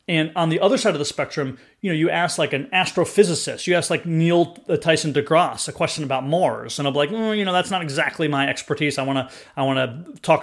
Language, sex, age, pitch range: English, male, 30-49, 140-180 Hz